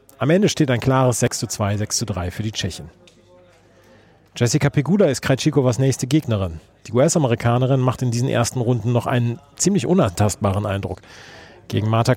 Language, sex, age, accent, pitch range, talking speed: German, male, 40-59, German, 110-130 Hz, 150 wpm